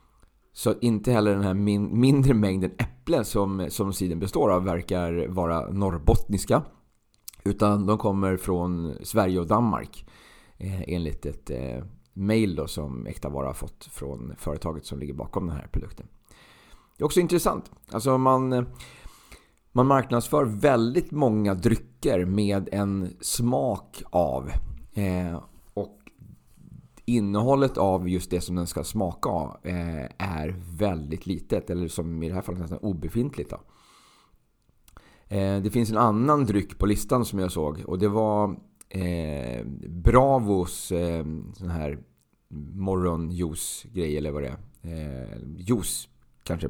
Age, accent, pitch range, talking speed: 30-49, native, 85-110 Hz, 130 wpm